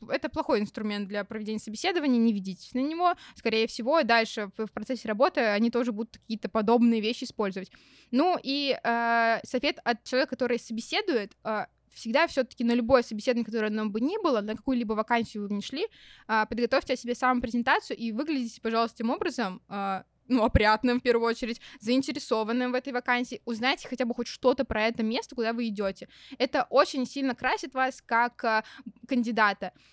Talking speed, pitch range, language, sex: 180 wpm, 220-260 Hz, Russian, female